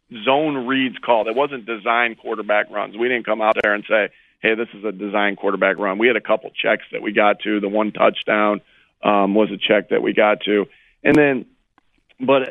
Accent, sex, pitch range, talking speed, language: American, male, 115-130 Hz, 215 wpm, English